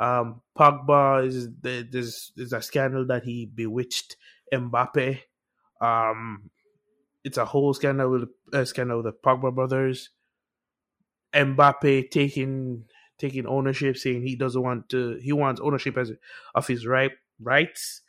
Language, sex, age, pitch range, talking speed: English, male, 20-39, 125-145 Hz, 140 wpm